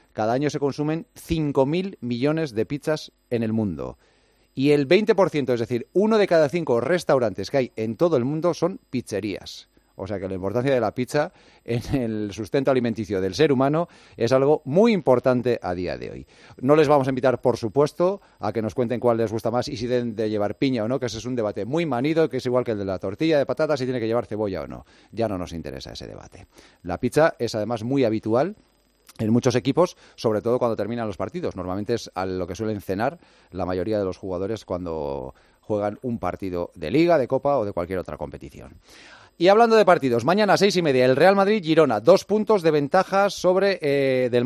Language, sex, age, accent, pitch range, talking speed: Spanish, male, 40-59, Spanish, 110-160 Hz, 220 wpm